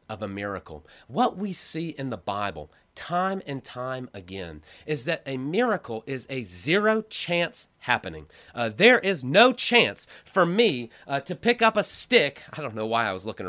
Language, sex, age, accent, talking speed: English, male, 30-49, American, 185 wpm